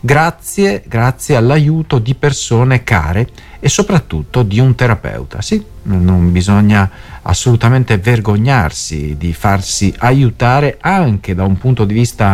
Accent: native